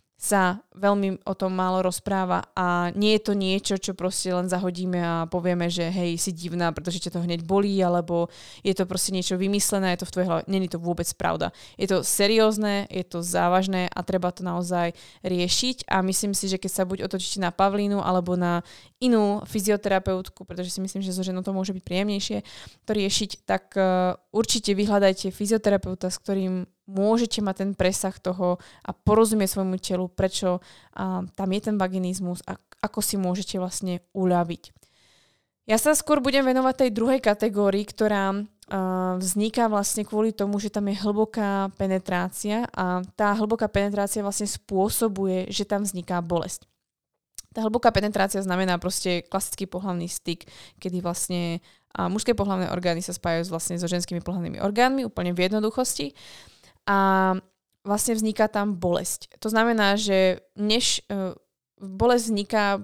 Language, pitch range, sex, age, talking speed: Slovak, 180-205 Hz, female, 20-39, 160 wpm